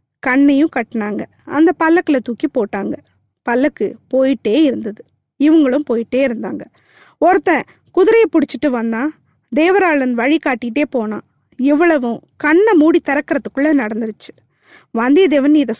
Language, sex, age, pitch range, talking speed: Tamil, female, 20-39, 260-345 Hz, 105 wpm